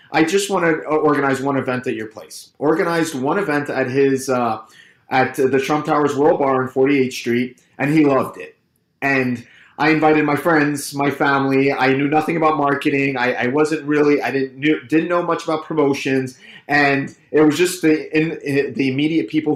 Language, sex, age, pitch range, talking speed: English, male, 30-49, 130-155 Hz, 195 wpm